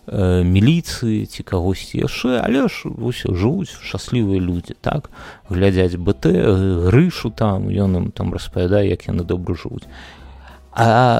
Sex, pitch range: male, 90-115 Hz